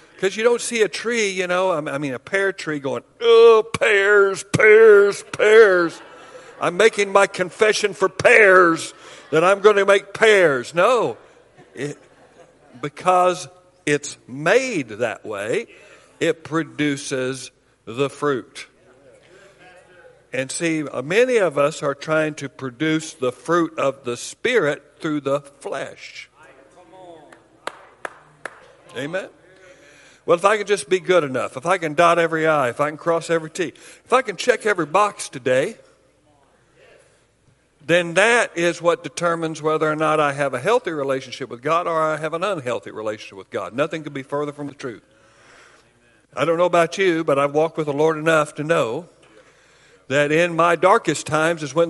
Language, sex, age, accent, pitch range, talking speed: English, male, 60-79, American, 145-195 Hz, 160 wpm